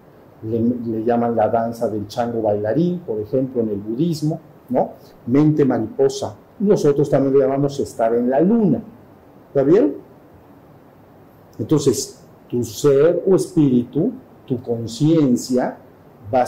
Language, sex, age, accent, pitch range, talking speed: Spanish, male, 50-69, Mexican, 120-150 Hz, 125 wpm